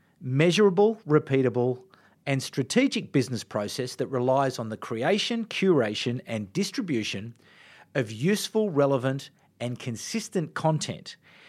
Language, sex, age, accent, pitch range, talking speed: English, male, 40-59, Australian, 125-185 Hz, 105 wpm